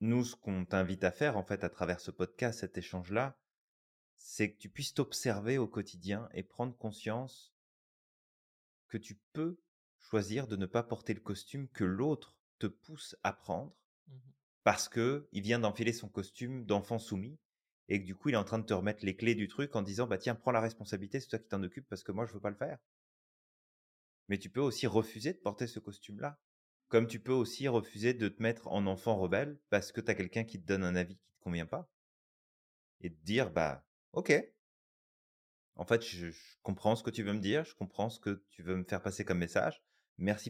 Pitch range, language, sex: 95-120 Hz, French, male